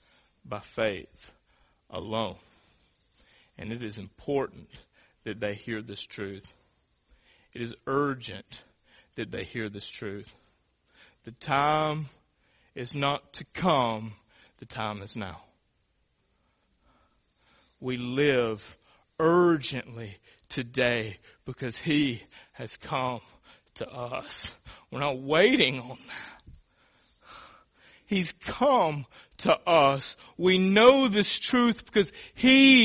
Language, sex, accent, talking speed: English, male, American, 100 wpm